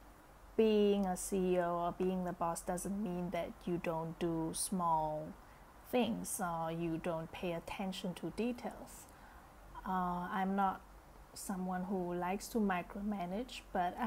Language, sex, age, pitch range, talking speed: English, female, 30-49, 175-200 Hz, 130 wpm